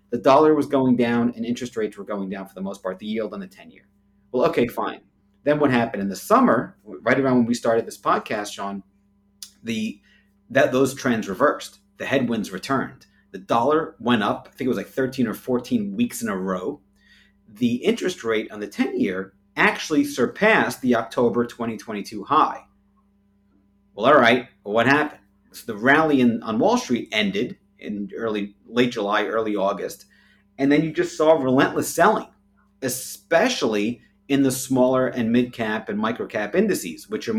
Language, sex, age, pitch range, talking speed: English, male, 30-49, 100-135 Hz, 175 wpm